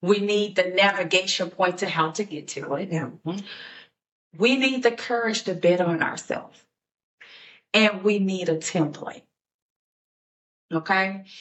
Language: English